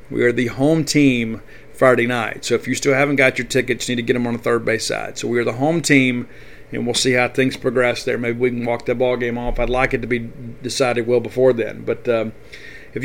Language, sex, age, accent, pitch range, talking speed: English, male, 40-59, American, 120-140 Hz, 265 wpm